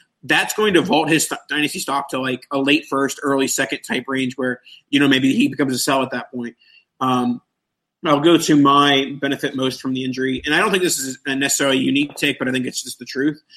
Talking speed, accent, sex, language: 240 wpm, American, male, English